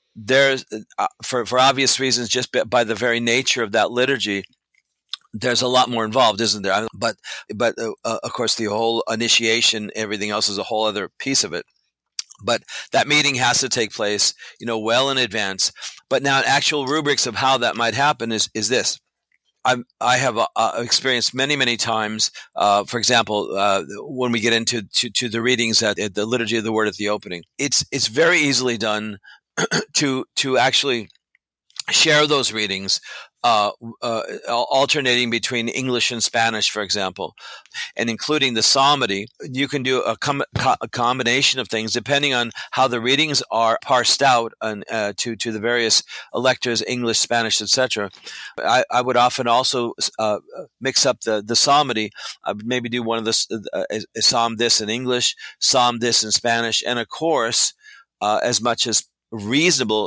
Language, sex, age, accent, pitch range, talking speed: English, male, 40-59, American, 110-130 Hz, 180 wpm